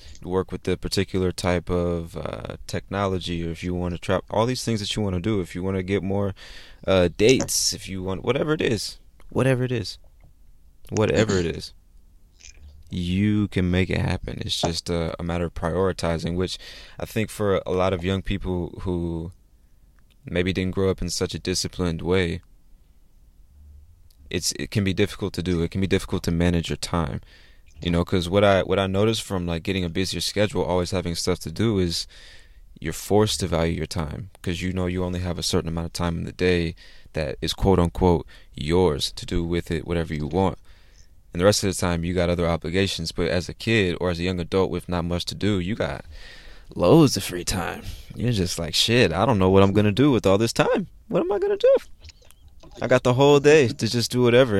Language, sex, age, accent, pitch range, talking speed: English, male, 20-39, American, 85-100 Hz, 220 wpm